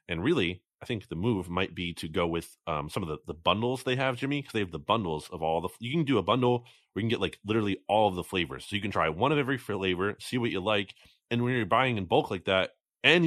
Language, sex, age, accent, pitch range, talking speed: English, male, 30-49, American, 85-120 Hz, 290 wpm